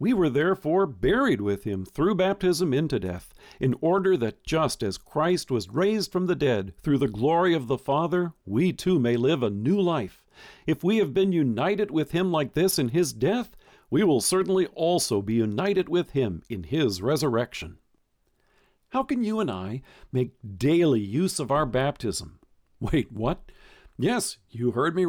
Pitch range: 115-175 Hz